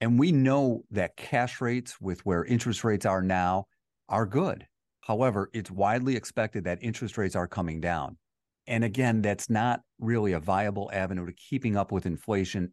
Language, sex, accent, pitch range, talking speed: English, male, American, 95-120 Hz, 175 wpm